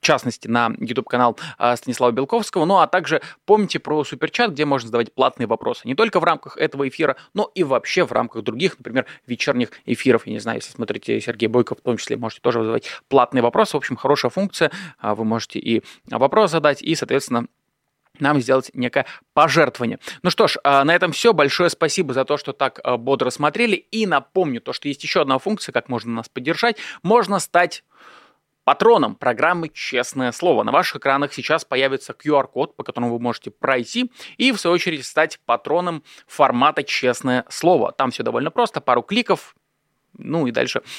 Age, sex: 20-39, male